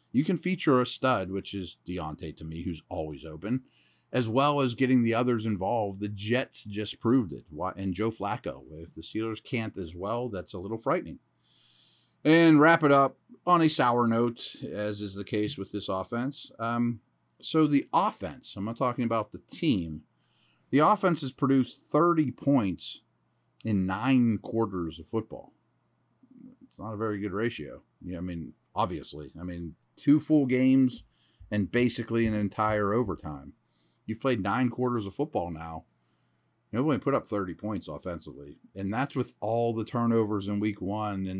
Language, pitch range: English, 90-125 Hz